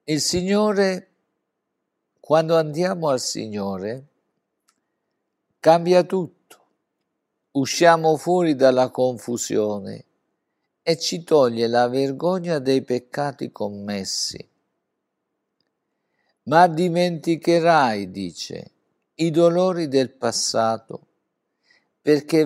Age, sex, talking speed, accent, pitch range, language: 50-69, male, 75 wpm, native, 110-160 Hz, Italian